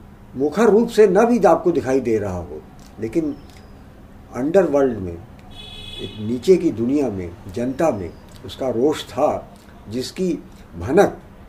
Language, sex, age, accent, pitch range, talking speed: Hindi, male, 50-69, native, 100-155 Hz, 130 wpm